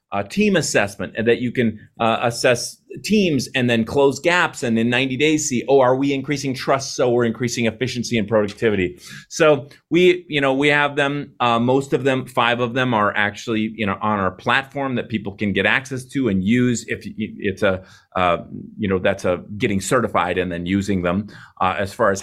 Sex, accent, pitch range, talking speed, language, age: male, American, 110-150 Hz, 210 wpm, English, 30-49